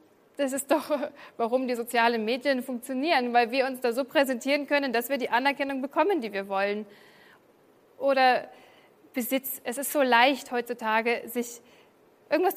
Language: German